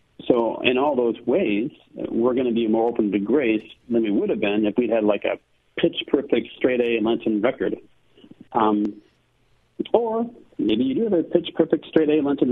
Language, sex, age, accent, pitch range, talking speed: English, male, 50-69, American, 110-145 Hz, 175 wpm